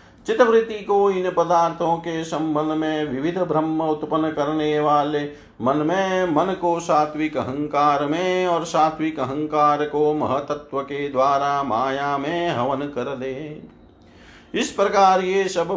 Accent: native